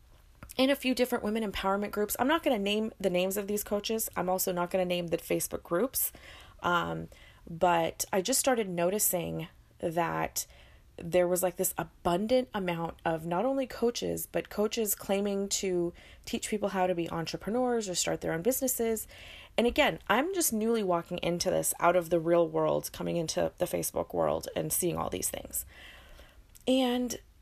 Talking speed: 180 wpm